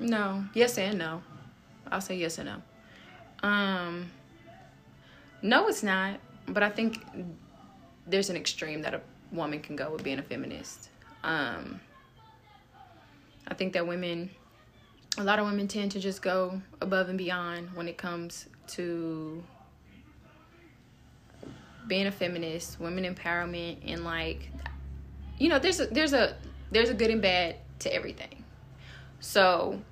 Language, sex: English, female